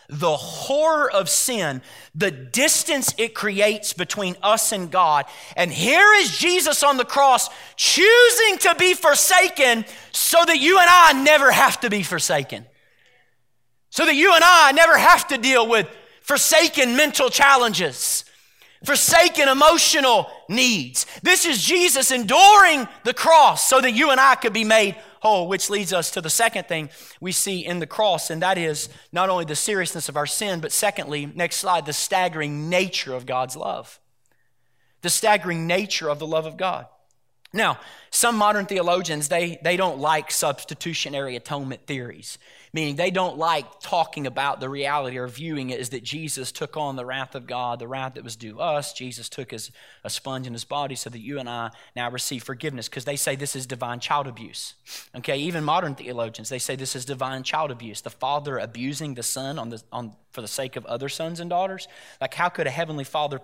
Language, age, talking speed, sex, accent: English, 30-49, 185 wpm, male, American